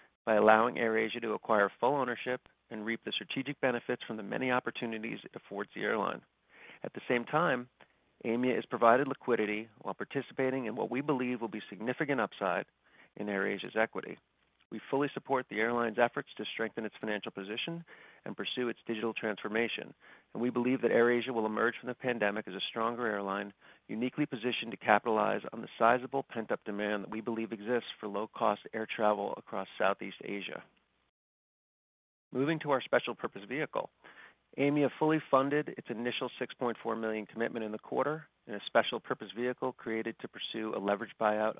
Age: 40-59